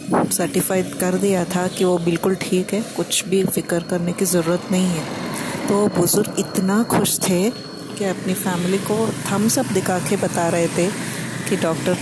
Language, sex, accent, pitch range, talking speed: Kannada, female, native, 180-220 Hz, 170 wpm